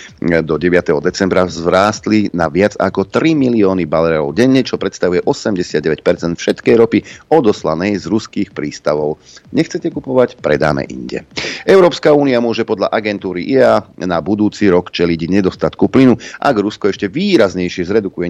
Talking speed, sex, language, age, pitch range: 135 wpm, male, Slovak, 40-59, 90-110 Hz